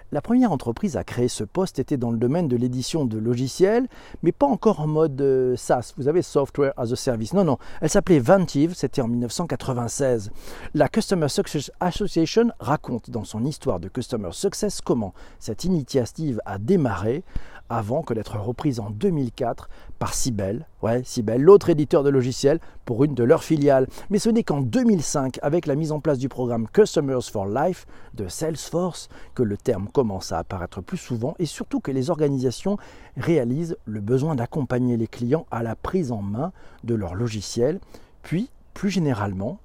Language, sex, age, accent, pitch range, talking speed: French, male, 40-59, French, 115-165 Hz, 175 wpm